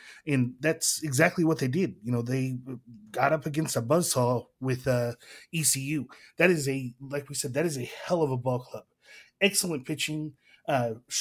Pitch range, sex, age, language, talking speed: 125-155 Hz, male, 20-39, English, 180 wpm